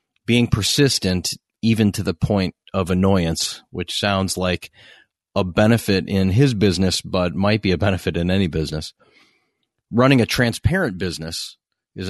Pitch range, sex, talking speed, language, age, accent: 90-120 Hz, male, 145 wpm, English, 30-49, American